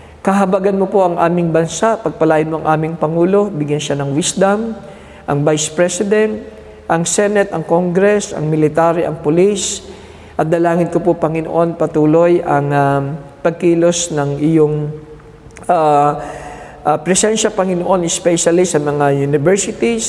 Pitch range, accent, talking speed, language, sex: 150-190 Hz, native, 135 wpm, Filipino, male